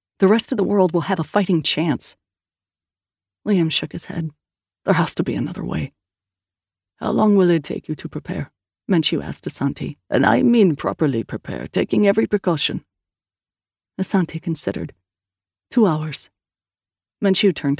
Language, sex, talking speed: English, female, 150 wpm